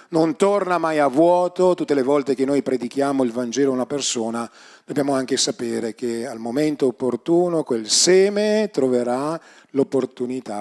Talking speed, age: 155 wpm, 40-59